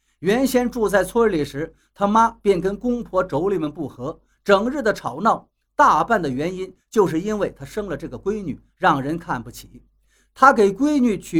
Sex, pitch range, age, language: male, 155-235 Hz, 50-69, Chinese